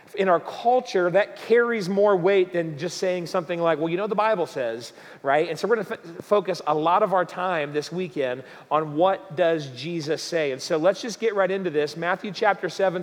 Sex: male